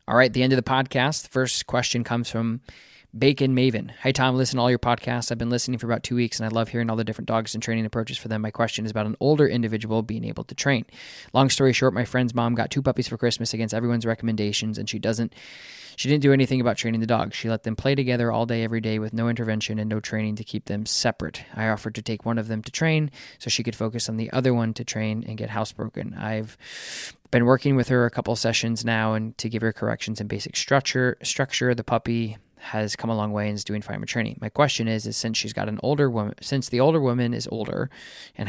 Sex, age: male, 20-39